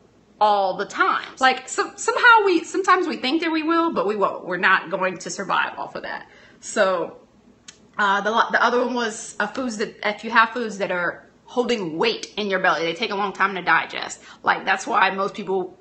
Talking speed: 215 wpm